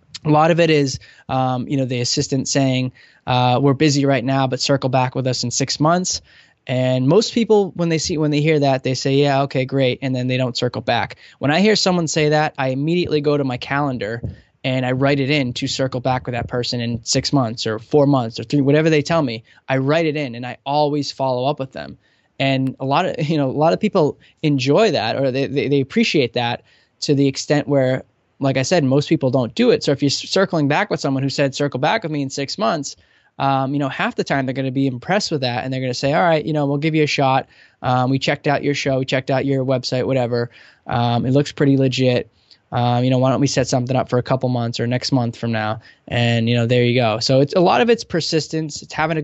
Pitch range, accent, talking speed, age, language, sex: 125-145 Hz, American, 260 wpm, 10-29, English, male